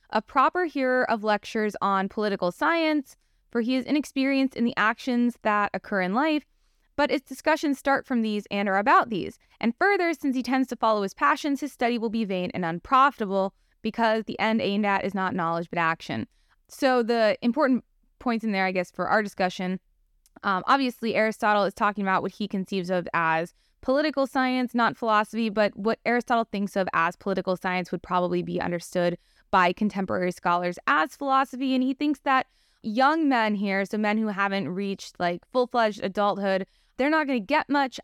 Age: 20-39